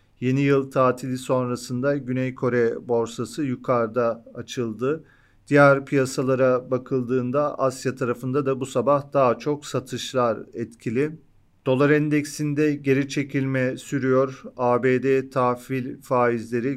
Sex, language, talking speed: male, Turkish, 105 wpm